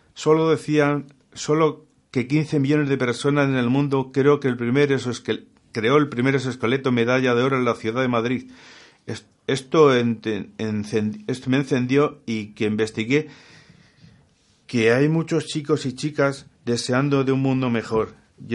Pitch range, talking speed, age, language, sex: 120-145 Hz, 150 wpm, 50-69, Spanish, male